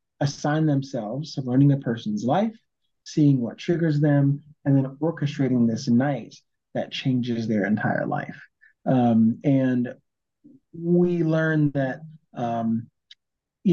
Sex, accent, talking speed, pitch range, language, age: male, American, 120 wpm, 125-155 Hz, English, 30-49